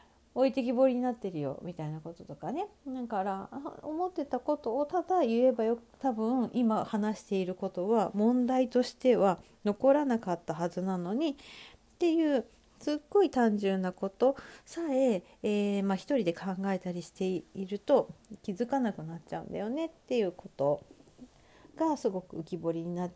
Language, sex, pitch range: Japanese, female, 175-260 Hz